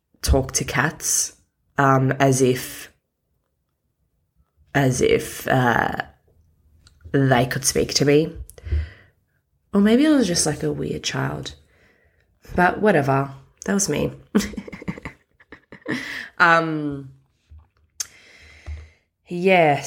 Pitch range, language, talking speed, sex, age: 120-165 Hz, English, 90 wpm, female, 20-39